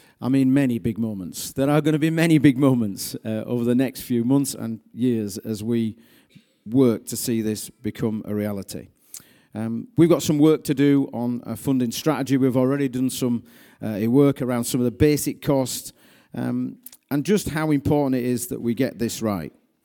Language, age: English, 40-59